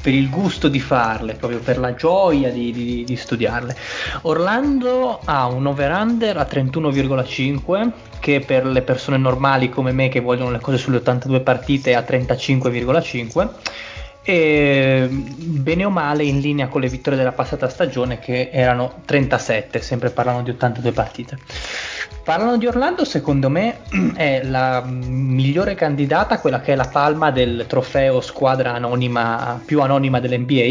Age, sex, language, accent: 20-39, male, Italian, native